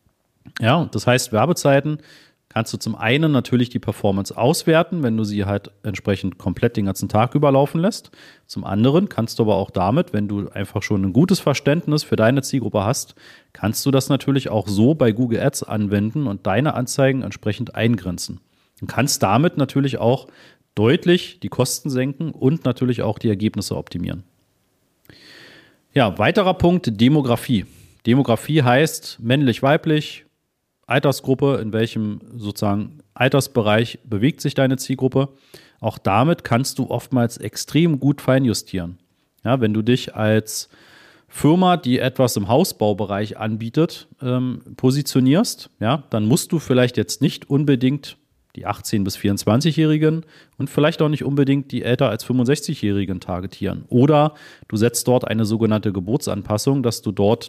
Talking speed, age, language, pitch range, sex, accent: 145 wpm, 40-59, German, 105-140 Hz, male, German